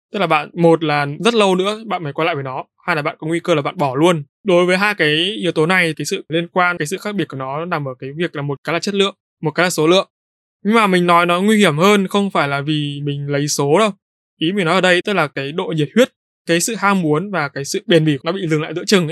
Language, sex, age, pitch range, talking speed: Vietnamese, male, 20-39, 150-190 Hz, 310 wpm